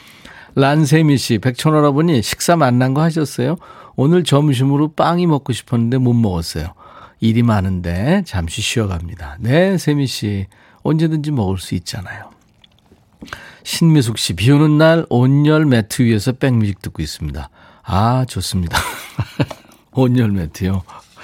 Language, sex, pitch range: Korean, male, 100-145 Hz